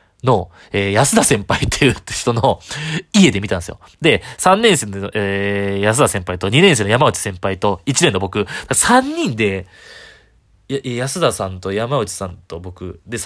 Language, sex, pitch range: Japanese, male, 105-165 Hz